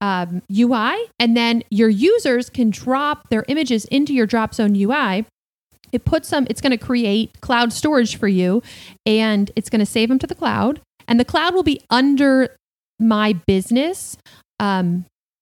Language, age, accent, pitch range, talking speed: English, 30-49, American, 210-275 Hz, 170 wpm